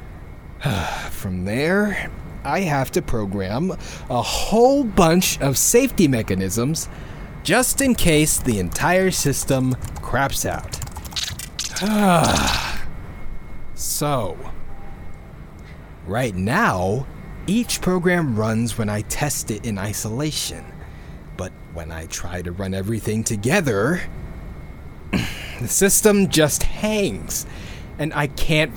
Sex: male